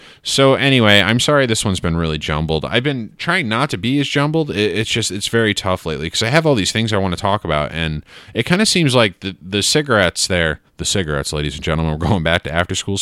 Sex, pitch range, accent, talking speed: male, 80-105 Hz, American, 250 wpm